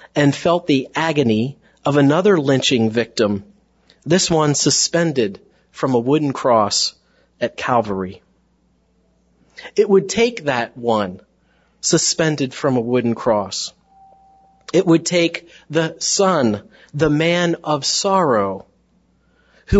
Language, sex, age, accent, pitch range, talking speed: English, male, 40-59, American, 120-170 Hz, 110 wpm